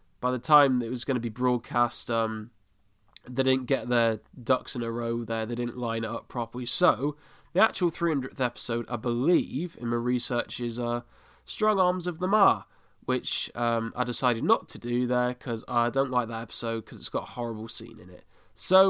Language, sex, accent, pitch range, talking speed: English, male, British, 115-135 Hz, 205 wpm